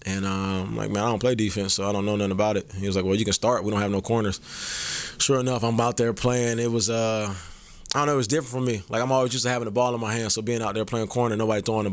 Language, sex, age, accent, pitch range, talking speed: English, male, 20-39, American, 100-120 Hz, 330 wpm